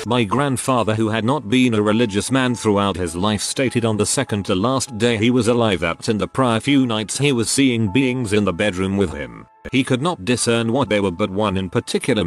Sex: male